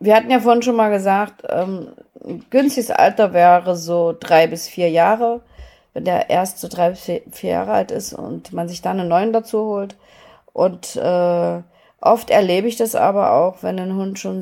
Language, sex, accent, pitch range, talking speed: German, female, German, 180-220 Hz, 195 wpm